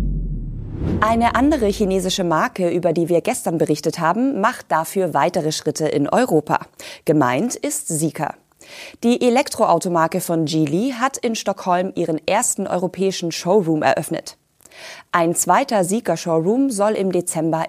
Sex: female